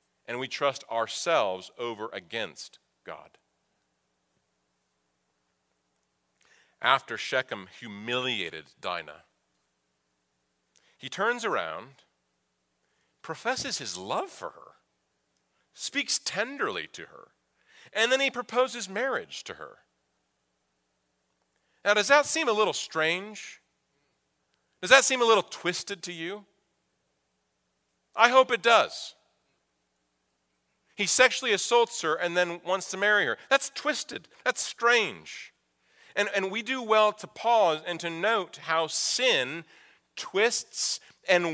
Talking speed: 110 wpm